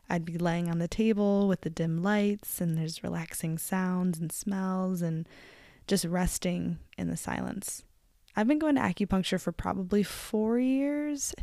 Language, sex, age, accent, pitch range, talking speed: English, female, 10-29, American, 170-205 Hz, 170 wpm